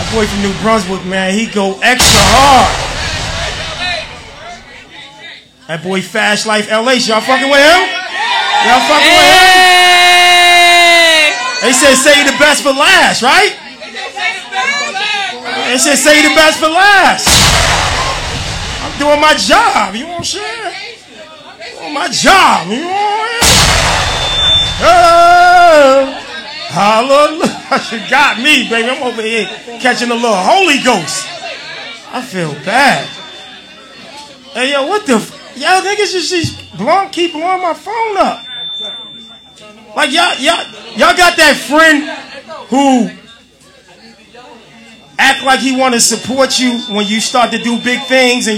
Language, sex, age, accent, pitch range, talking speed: English, male, 30-49, American, 245-335 Hz, 135 wpm